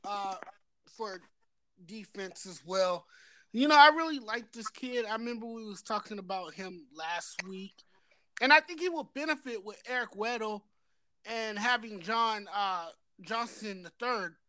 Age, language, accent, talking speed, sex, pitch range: 20-39, English, American, 155 wpm, male, 200-245 Hz